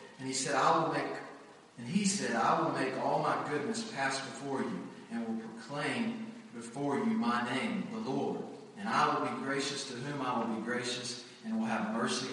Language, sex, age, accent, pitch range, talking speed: English, male, 40-59, American, 130-185 Hz, 205 wpm